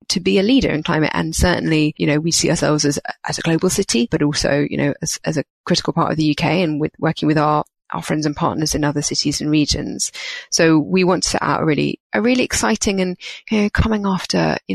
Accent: British